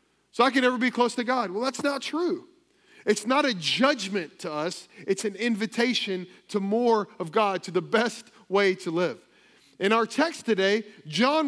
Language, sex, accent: English, male, American